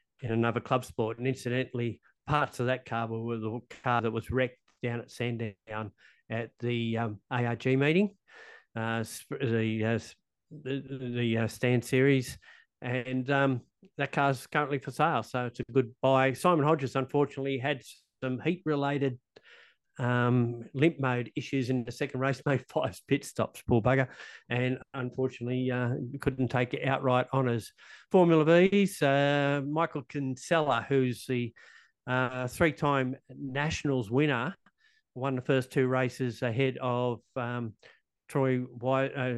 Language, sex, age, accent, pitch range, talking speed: English, male, 50-69, Australian, 120-140 Hz, 140 wpm